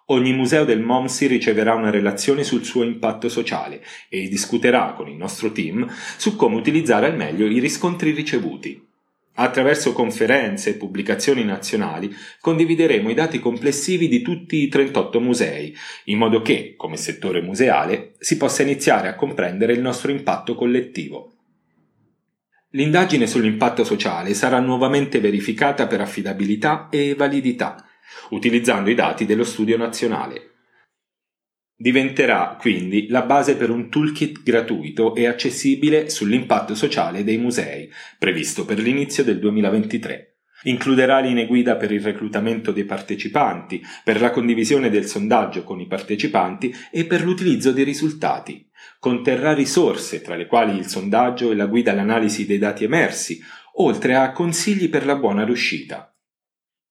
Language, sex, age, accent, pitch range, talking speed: Italian, male, 40-59, native, 110-140 Hz, 140 wpm